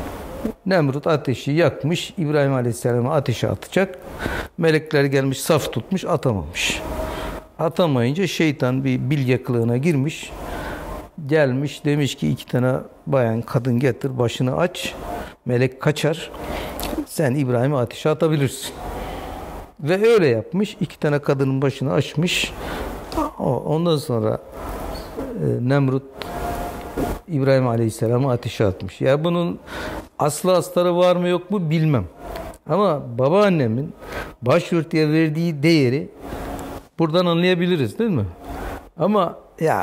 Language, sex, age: Turkish, male, 60-79